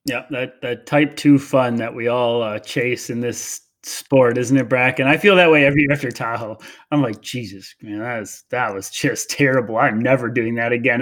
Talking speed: 220 wpm